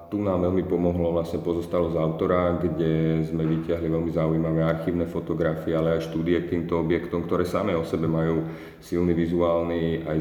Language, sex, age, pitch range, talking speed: Slovak, male, 30-49, 80-85 Hz, 170 wpm